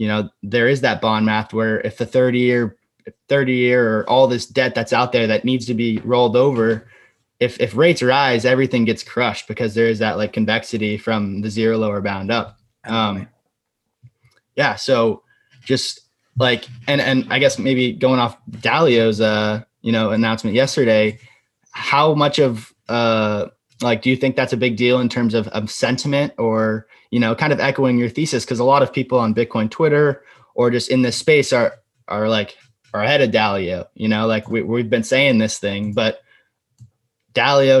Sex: male